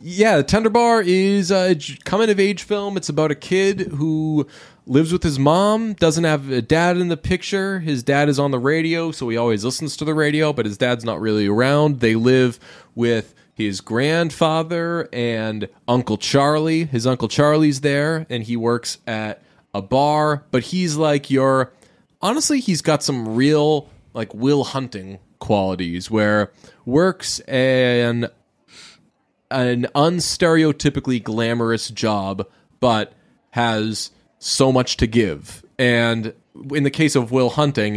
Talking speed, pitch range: 150 wpm, 115-155 Hz